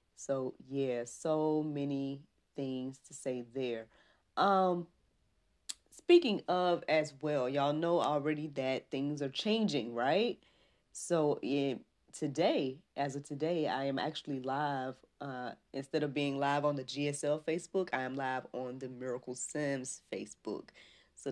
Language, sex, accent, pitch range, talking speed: English, female, American, 125-155 Hz, 135 wpm